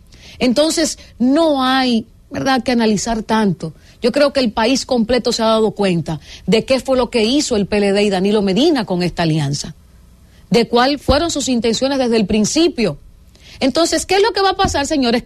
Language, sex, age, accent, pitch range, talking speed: English, female, 40-59, American, 185-285 Hz, 190 wpm